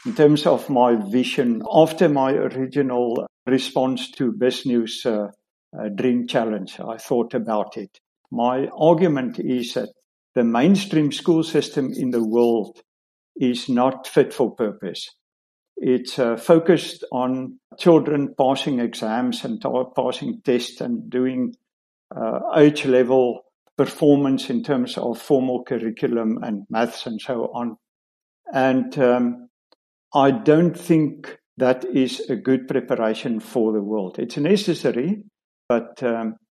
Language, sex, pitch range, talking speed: English, male, 125-160 Hz, 130 wpm